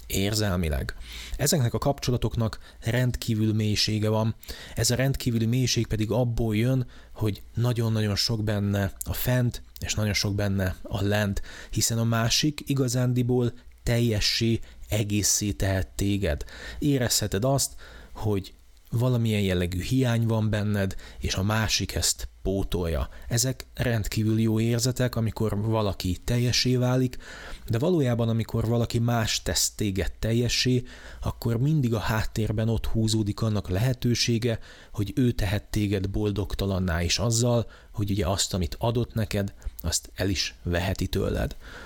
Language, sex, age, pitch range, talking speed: Hungarian, male, 30-49, 100-120 Hz, 130 wpm